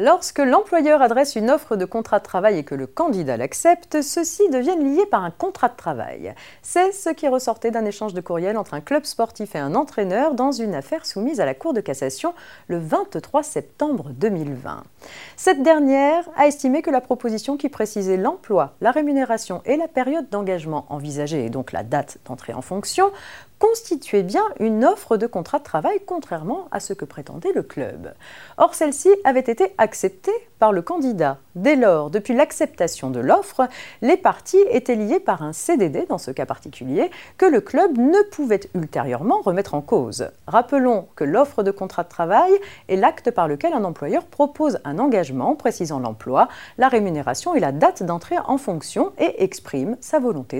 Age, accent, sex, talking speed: 30-49, French, female, 180 wpm